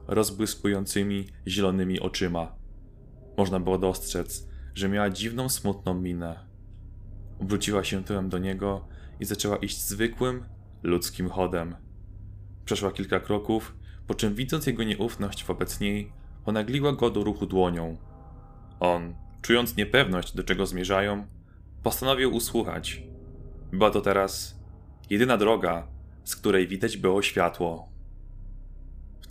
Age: 20-39